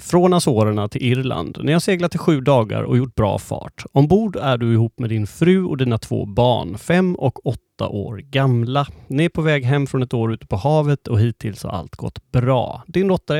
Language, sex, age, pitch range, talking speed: English, male, 30-49, 115-150 Hz, 220 wpm